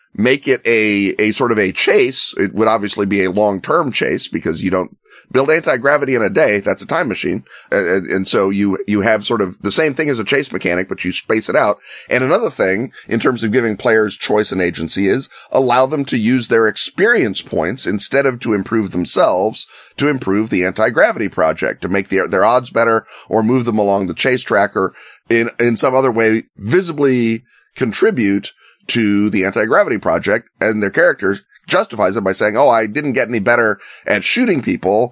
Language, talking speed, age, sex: English, 205 wpm, 30-49, male